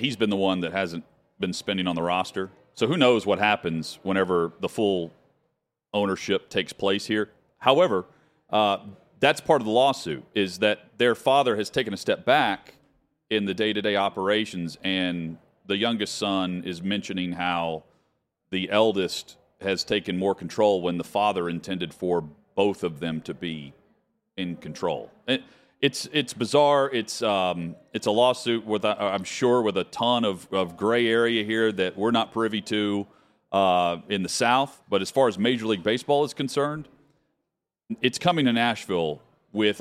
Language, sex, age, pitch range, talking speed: English, male, 40-59, 90-115 Hz, 165 wpm